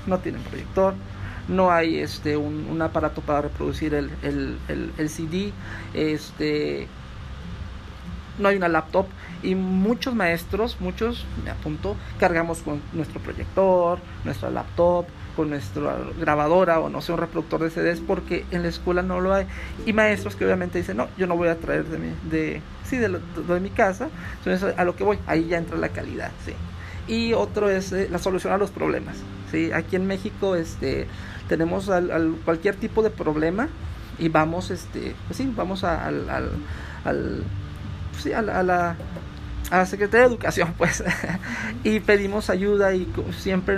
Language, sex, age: Spanish, male, 40-59